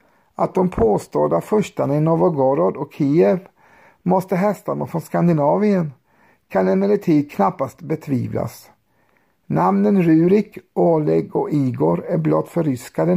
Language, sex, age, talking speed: Swedish, male, 50-69, 110 wpm